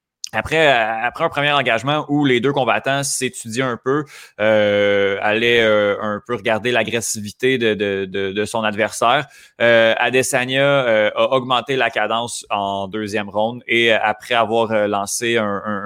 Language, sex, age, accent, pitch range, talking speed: French, male, 20-39, Canadian, 110-135 Hz, 155 wpm